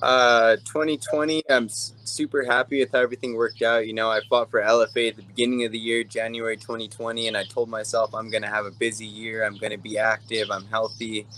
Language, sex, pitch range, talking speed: English, male, 105-115 Hz, 210 wpm